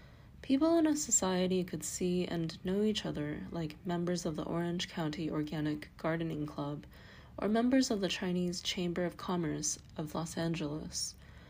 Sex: female